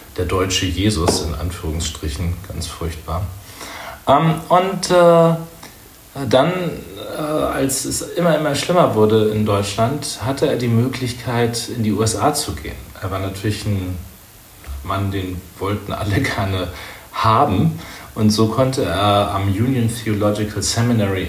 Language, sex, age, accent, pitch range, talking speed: German, male, 40-59, German, 90-110 Hz, 125 wpm